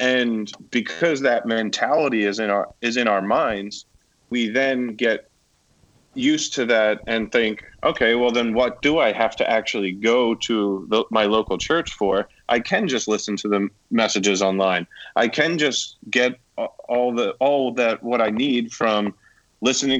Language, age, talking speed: English, 30-49, 165 wpm